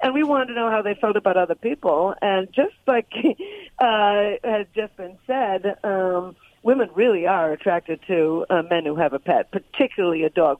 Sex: female